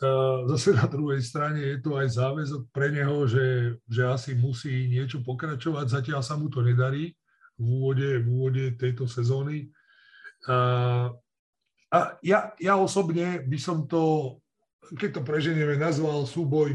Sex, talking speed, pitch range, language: male, 145 wpm, 130-160 Hz, Slovak